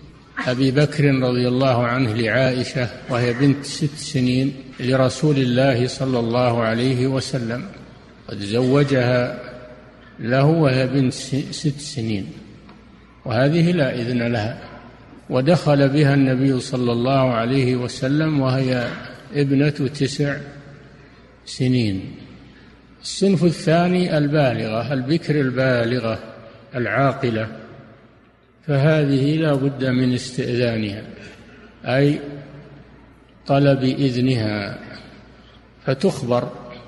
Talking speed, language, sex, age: 85 wpm, Arabic, male, 50-69